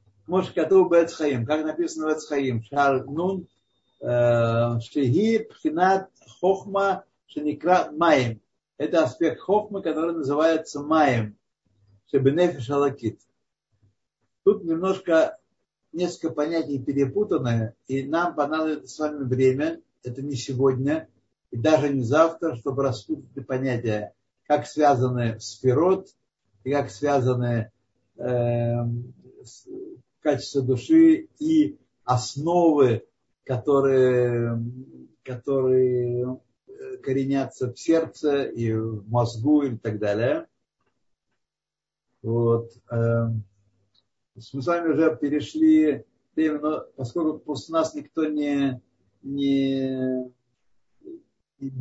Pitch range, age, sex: 120-160 Hz, 60-79, male